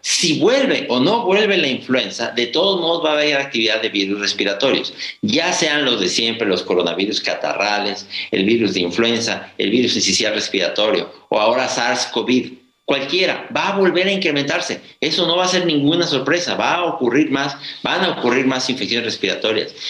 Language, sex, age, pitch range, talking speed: Spanish, male, 50-69, 115-155 Hz, 180 wpm